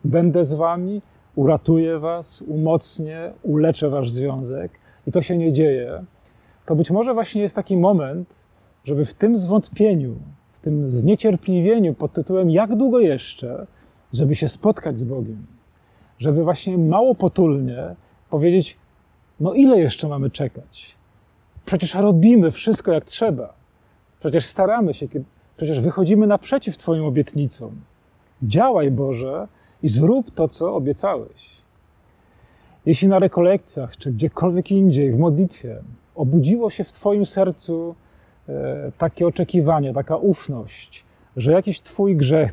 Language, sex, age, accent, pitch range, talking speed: Polish, male, 40-59, native, 135-185 Hz, 125 wpm